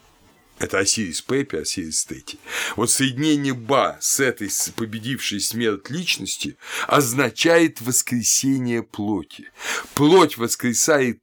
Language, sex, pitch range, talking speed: Russian, male, 105-135 Hz, 95 wpm